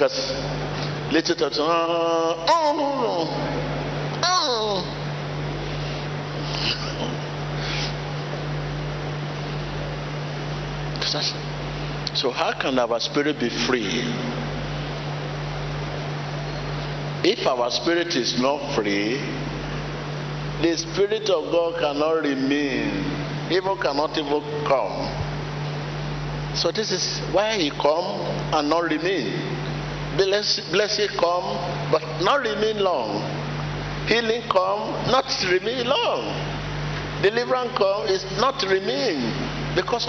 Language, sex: English, male